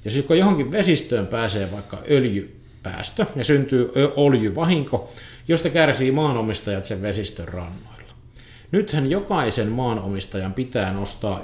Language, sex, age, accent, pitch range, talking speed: Finnish, male, 50-69, native, 105-130 Hz, 105 wpm